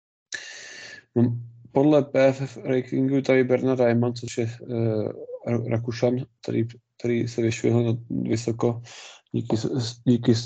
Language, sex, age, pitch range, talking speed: Czech, male, 20-39, 115-125 Hz, 100 wpm